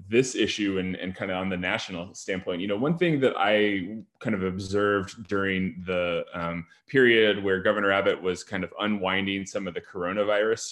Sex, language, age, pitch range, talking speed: male, English, 20-39, 90-105 Hz, 190 wpm